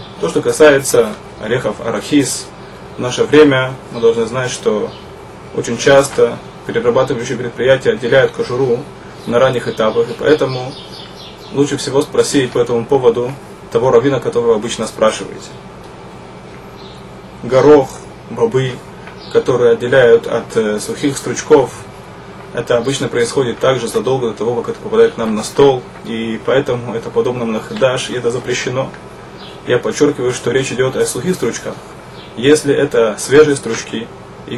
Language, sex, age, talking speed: Russian, male, 20-39, 135 wpm